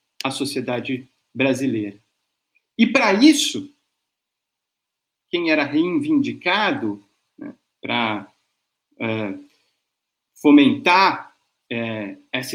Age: 50-69